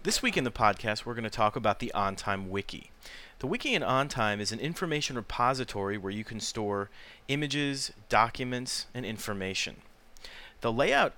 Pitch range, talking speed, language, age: 100-120 Hz, 165 wpm, English, 40-59